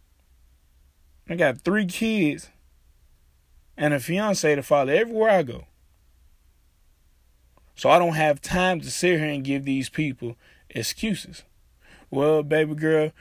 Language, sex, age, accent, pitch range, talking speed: English, male, 20-39, American, 115-155 Hz, 125 wpm